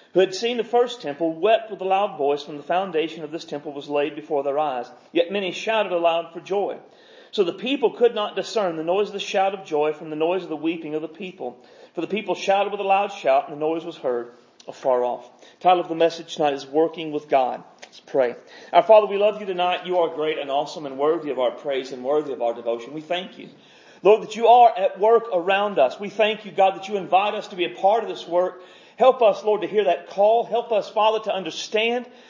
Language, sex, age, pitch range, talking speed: English, male, 40-59, 165-235 Hz, 255 wpm